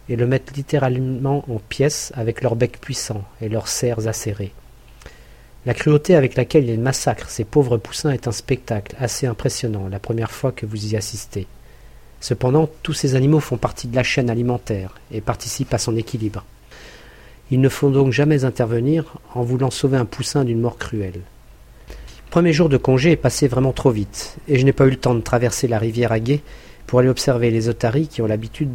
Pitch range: 115-130 Hz